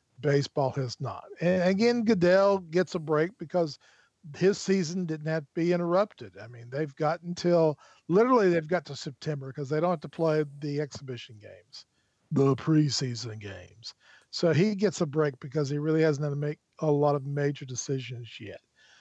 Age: 40-59